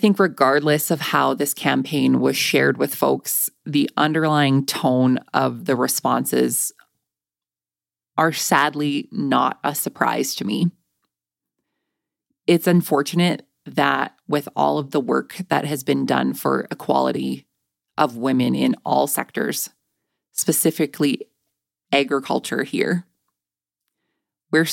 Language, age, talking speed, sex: English, 20-39, 110 wpm, female